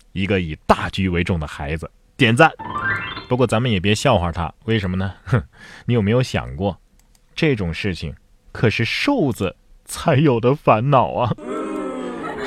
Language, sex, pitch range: Chinese, male, 100-155 Hz